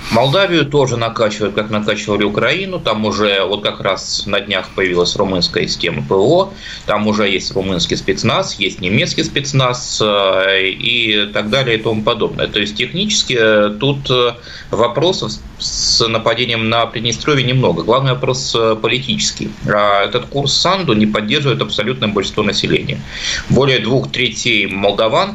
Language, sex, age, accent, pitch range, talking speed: Russian, male, 20-39, native, 100-120 Hz, 135 wpm